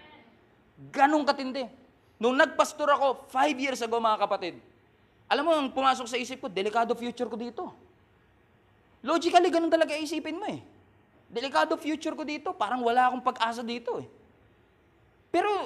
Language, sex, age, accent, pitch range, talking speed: English, male, 20-39, Filipino, 255-315 Hz, 145 wpm